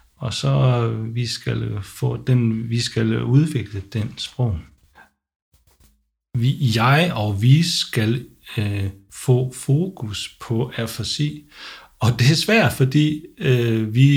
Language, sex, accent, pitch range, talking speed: English, male, Danish, 100-130 Hz, 120 wpm